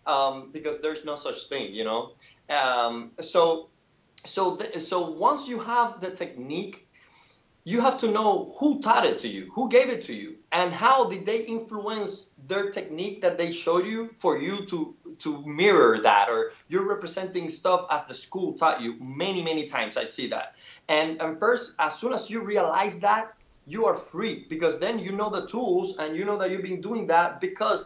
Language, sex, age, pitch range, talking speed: English, male, 20-39, 165-225 Hz, 195 wpm